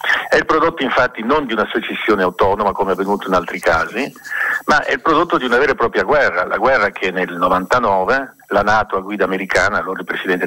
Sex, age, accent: male, 50-69, native